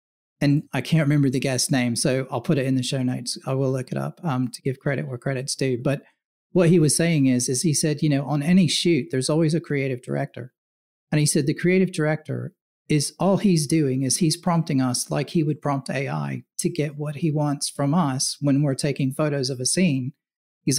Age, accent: 40-59, American